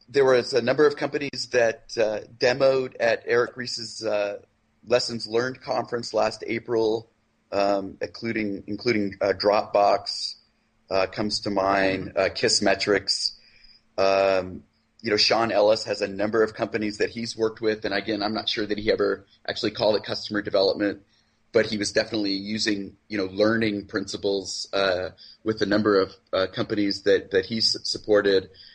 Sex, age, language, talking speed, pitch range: male, 30-49, English, 160 wpm, 105-120 Hz